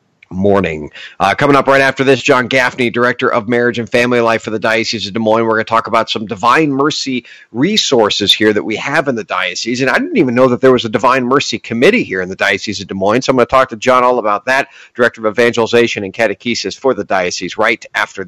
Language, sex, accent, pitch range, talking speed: English, male, American, 120-150 Hz, 250 wpm